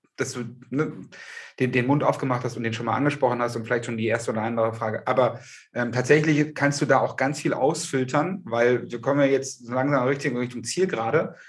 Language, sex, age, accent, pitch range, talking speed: German, male, 30-49, German, 125-155 Hz, 225 wpm